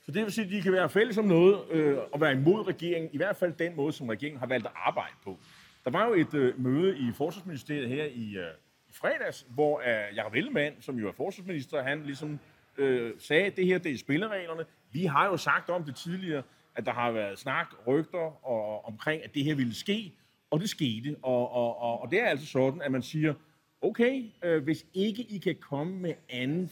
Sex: male